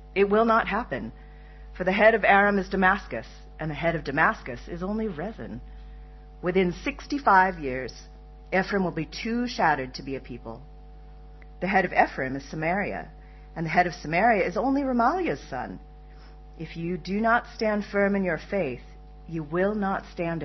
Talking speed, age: 175 wpm, 40-59